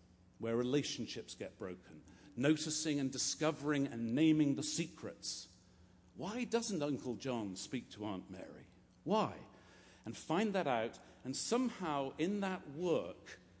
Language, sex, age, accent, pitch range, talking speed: English, male, 50-69, British, 95-155 Hz, 130 wpm